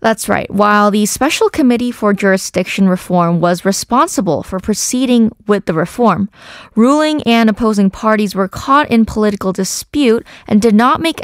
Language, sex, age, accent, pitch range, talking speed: English, female, 20-39, American, 190-230 Hz, 155 wpm